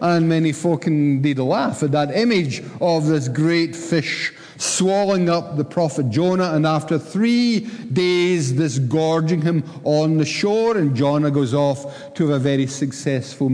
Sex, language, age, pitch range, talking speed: male, English, 50-69, 145-185 Hz, 160 wpm